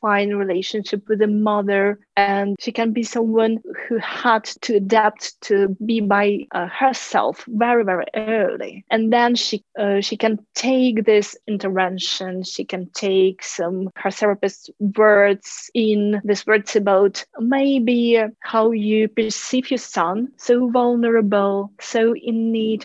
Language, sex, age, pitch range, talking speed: English, female, 30-49, 205-240 Hz, 135 wpm